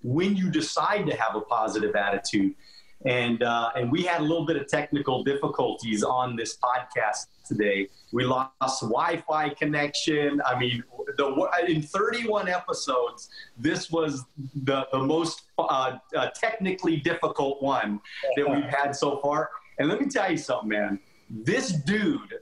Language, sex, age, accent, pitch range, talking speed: English, male, 40-59, American, 130-165 Hz, 155 wpm